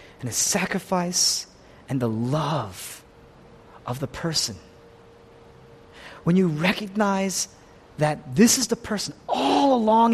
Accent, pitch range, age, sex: American, 115-155 Hz, 30-49, male